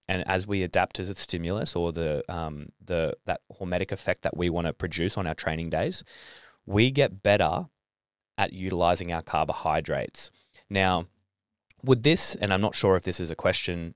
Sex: male